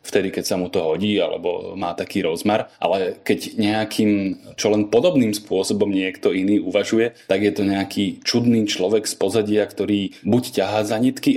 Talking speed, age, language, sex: 175 wpm, 30-49, Slovak, male